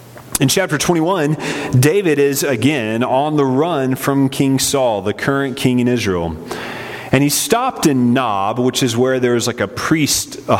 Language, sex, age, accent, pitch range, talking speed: English, male, 30-49, American, 120-155 Hz, 175 wpm